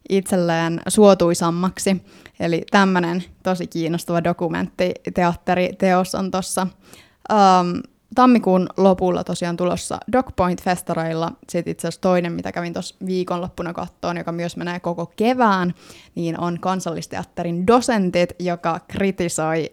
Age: 20-39